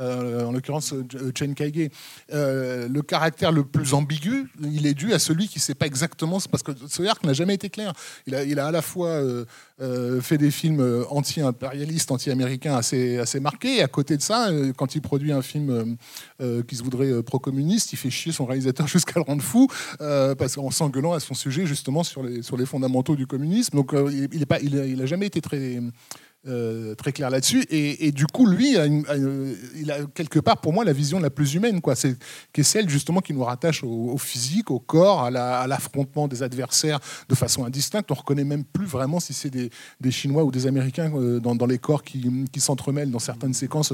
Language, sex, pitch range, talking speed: French, male, 130-155 Hz, 220 wpm